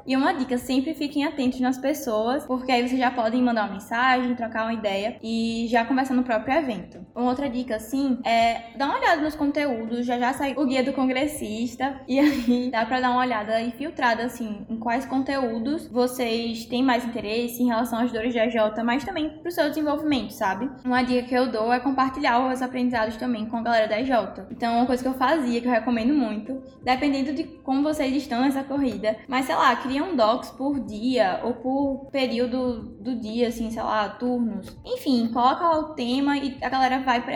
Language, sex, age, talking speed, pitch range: Portuguese, female, 10-29, 205 wpm, 235-270 Hz